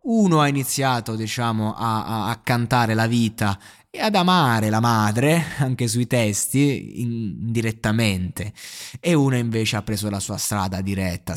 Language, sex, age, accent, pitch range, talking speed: Italian, male, 20-39, native, 110-140 Hz, 155 wpm